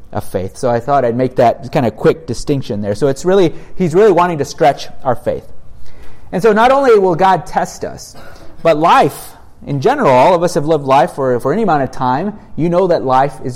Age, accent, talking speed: 30-49, American, 230 wpm